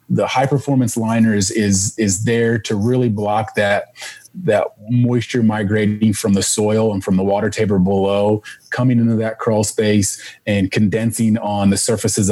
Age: 30-49